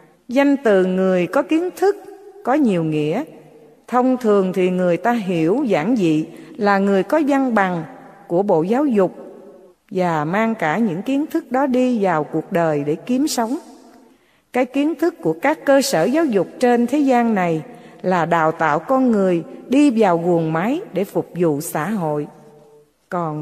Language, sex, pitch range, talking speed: English, female, 175-275 Hz, 175 wpm